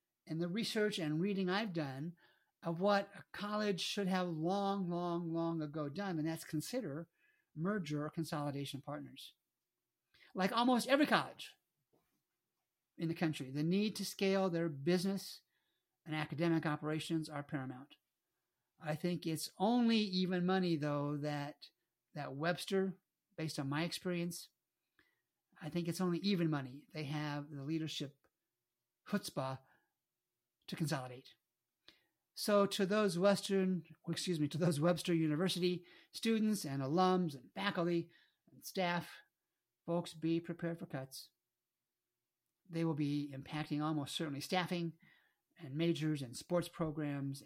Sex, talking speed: male, 130 wpm